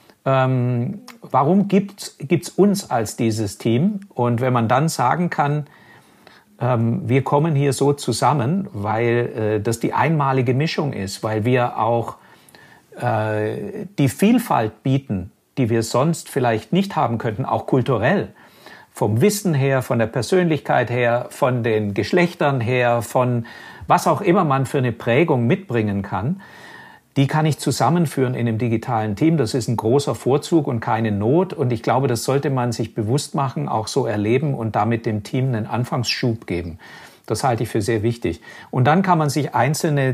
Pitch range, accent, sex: 115-145 Hz, German, male